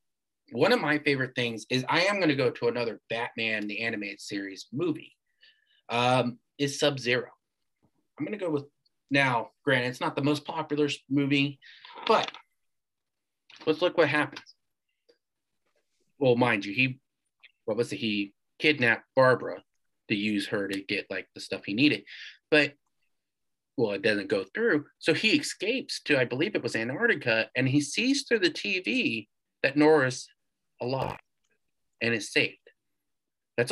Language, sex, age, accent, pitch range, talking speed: English, male, 30-49, American, 120-150 Hz, 155 wpm